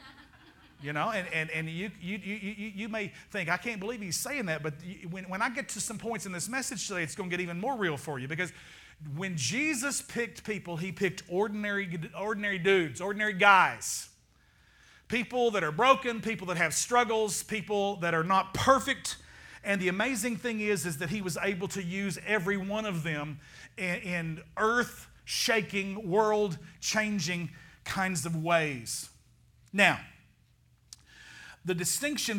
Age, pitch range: 40-59, 165-205 Hz